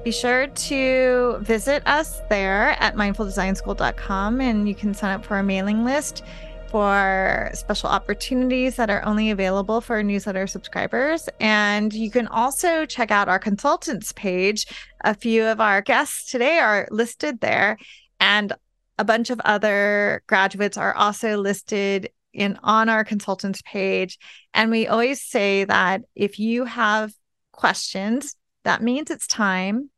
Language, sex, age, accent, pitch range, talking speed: English, female, 30-49, American, 205-250 Hz, 145 wpm